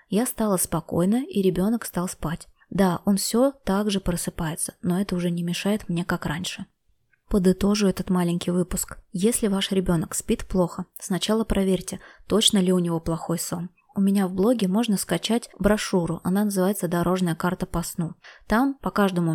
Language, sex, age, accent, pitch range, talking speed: Russian, female, 20-39, native, 175-200 Hz, 165 wpm